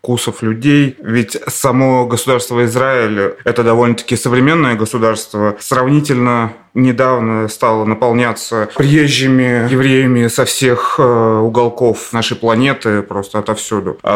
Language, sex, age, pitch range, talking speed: Russian, male, 20-39, 110-130 Hz, 100 wpm